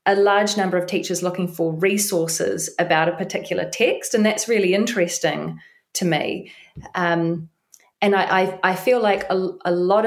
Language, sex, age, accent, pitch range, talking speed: English, female, 30-49, Australian, 170-200 Hz, 165 wpm